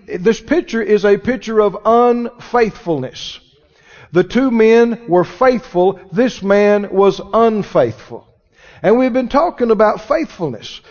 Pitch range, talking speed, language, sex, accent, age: 190-240 Hz, 120 wpm, English, male, American, 50-69